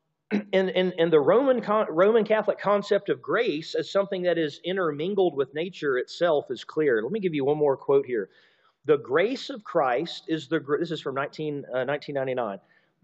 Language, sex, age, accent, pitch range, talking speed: English, male, 40-59, American, 165-255 Hz, 185 wpm